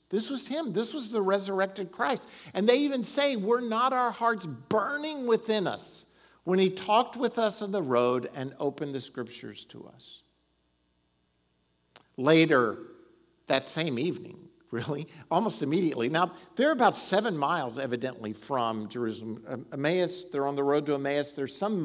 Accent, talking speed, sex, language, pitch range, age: American, 155 wpm, male, English, 135-205 Hz, 50-69